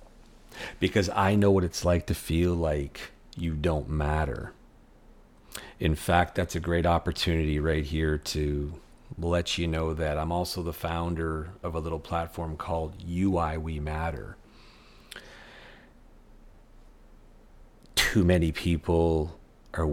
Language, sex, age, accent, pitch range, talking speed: English, male, 40-59, American, 75-85 Hz, 125 wpm